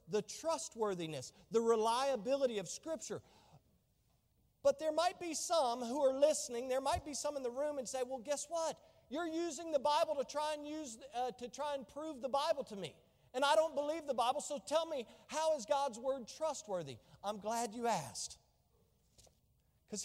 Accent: American